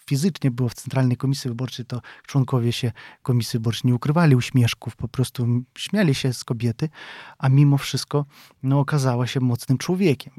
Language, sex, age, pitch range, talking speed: Polish, male, 20-39, 125-140 Hz, 155 wpm